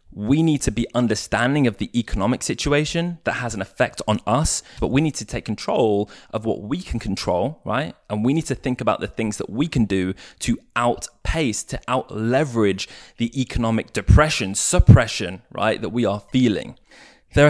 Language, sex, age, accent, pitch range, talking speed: English, male, 20-39, British, 100-125 Hz, 180 wpm